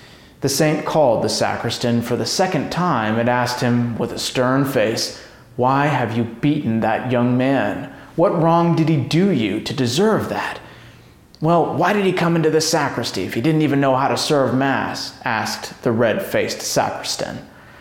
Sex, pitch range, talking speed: male, 120-165 Hz, 180 wpm